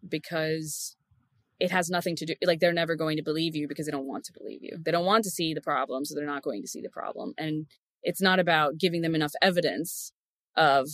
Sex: female